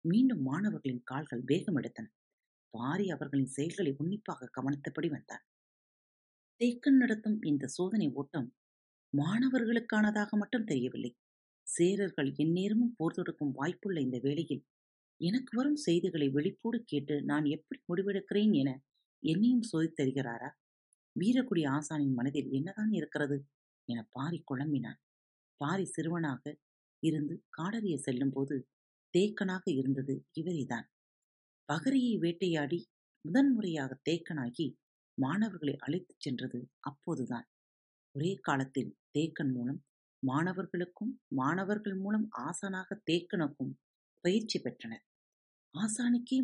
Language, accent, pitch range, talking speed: Tamil, native, 135-195 Hz, 95 wpm